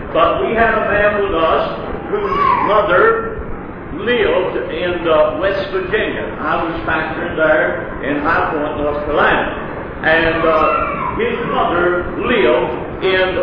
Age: 60-79